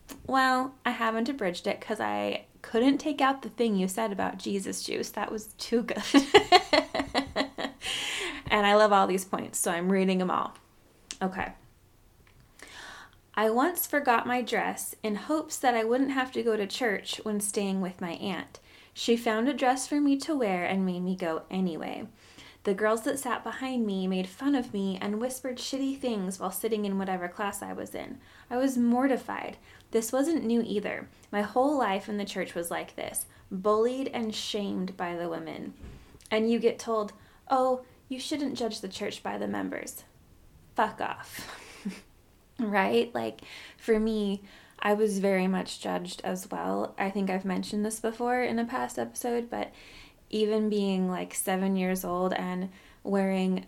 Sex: female